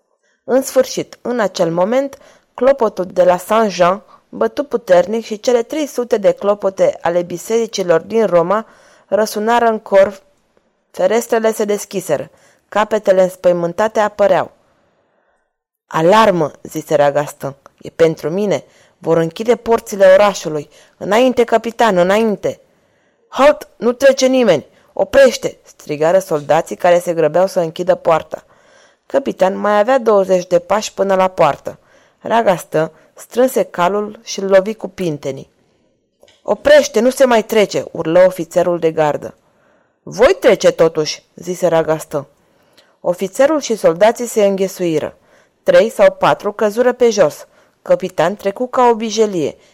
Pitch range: 180-240 Hz